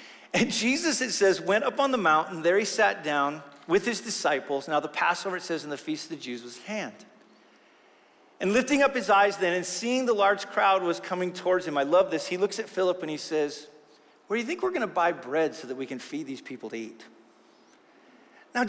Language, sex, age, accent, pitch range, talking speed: English, male, 40-59, American, 160-235 Hz, 230 wpm